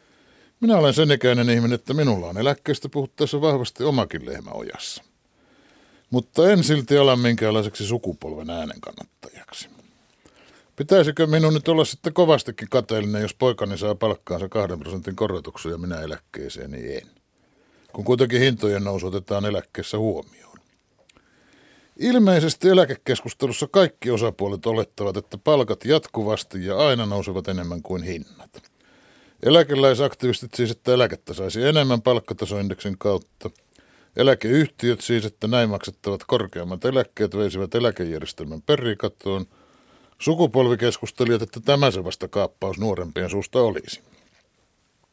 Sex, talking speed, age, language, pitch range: male, 115 wpm, 60-79, Finnish, 100-135 Hz